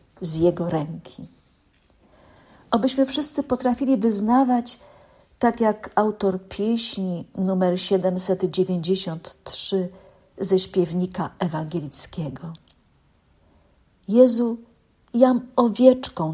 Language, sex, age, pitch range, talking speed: Polish, female, 50-69, 180-230 Hz, 70 wpm